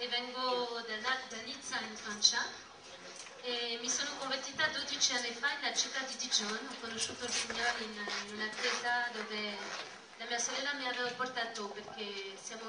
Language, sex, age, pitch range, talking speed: Italian, female, 30-49, 215-255 Hz, 155 wpm